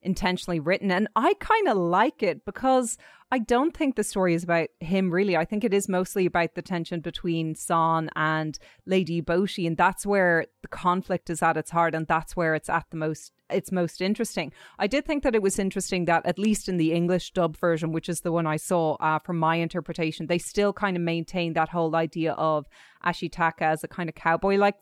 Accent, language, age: Irish, English, 20-39